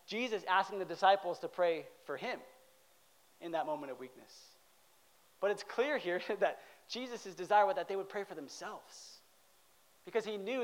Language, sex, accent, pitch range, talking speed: English, male, American, 185-240 Hz, 170 wpm